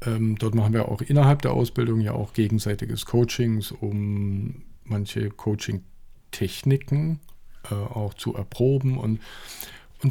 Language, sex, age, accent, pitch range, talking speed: German, male, 50-69, German, 105-135 Hz, 120 wpm